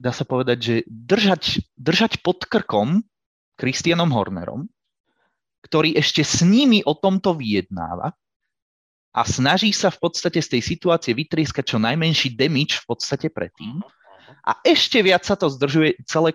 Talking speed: 145 wpm